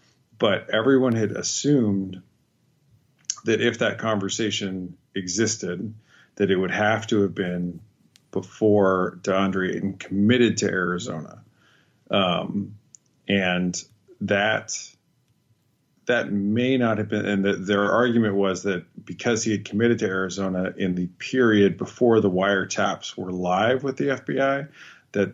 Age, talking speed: 30-49, 125 wpm